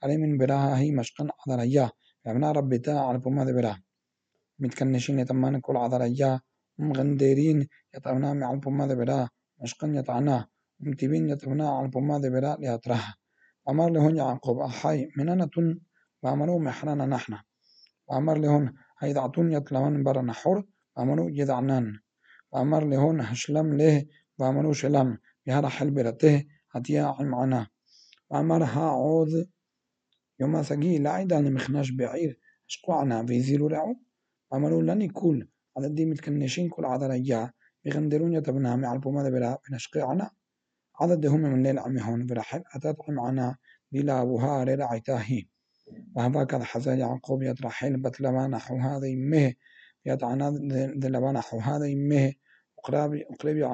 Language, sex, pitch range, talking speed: Hebrew, male, 130-150 Hz, 125 wpm